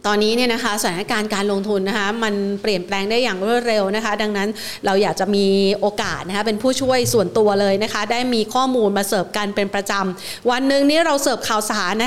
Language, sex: Thai, female